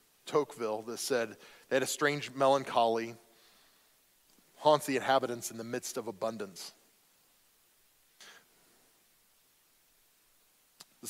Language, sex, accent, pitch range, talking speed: English, male, American, 125-155 Hz, 85 wpm